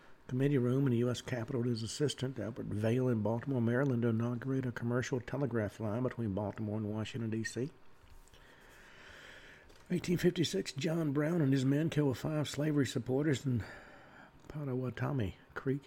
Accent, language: American, English